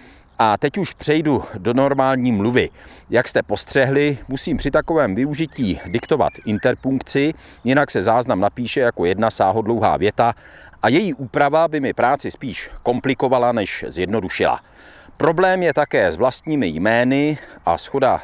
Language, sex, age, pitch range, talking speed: Czech, male, 40-59, 115-150 Hz, 140 wpm